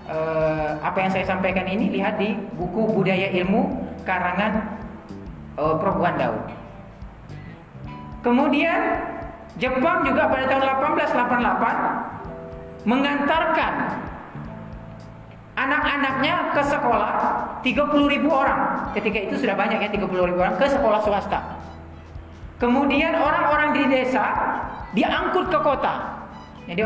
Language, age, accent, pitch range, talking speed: Indonesian, 40-59, native, 185-285 Hz, 100 wpm